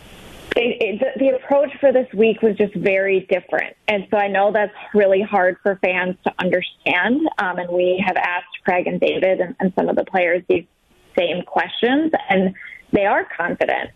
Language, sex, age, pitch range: English, female, 20-39, 185-220 Hz